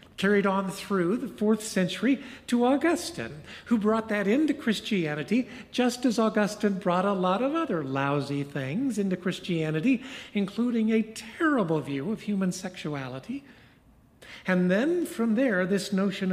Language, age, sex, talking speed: English, 50-69, male, 140 wpm